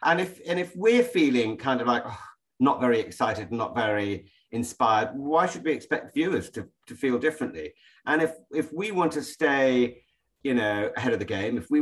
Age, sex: 40-59, male